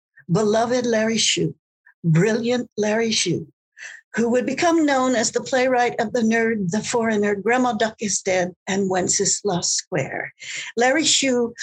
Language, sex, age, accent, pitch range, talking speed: English, female, 60-79, American, 220-265 Hz, 140 wpm